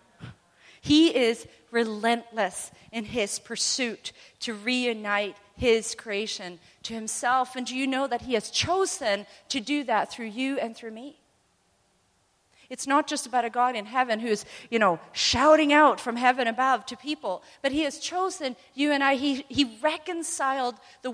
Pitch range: 250-330 Hz